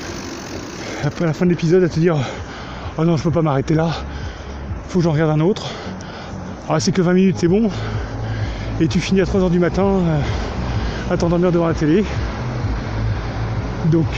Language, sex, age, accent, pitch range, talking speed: French, male, 30-49, French, 120-170 Hz, 180 wpm